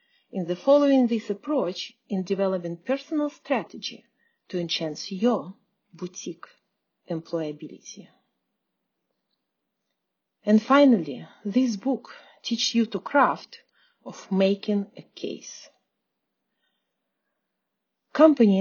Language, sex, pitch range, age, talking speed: English, female, 185-260 Hz, 40-59, 85 wpm